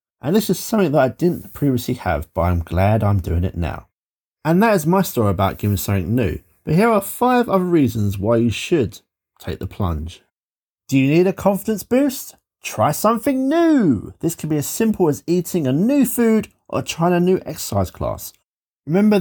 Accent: British